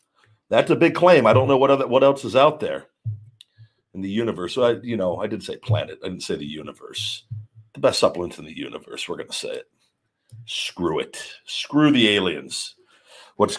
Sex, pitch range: male, 100-130 Hz